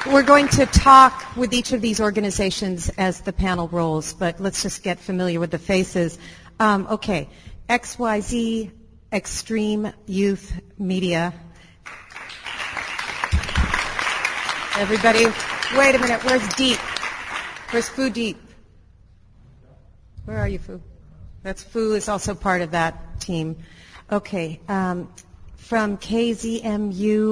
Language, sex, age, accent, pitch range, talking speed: English, female, 40-59, American, 170-215 Hz, 115 wpm